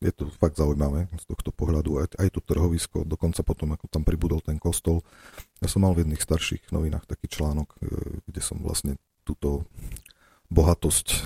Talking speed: 175 wpm